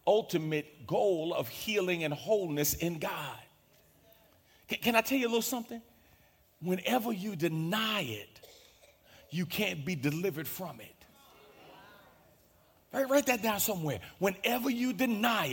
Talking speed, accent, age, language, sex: 130 wpm, American, 40-59, English, male